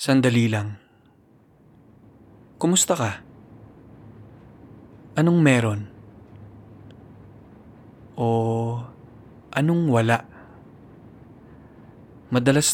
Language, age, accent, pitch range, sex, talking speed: Filipino, 20-39, native, 110-125 Hz, male, 45 wpm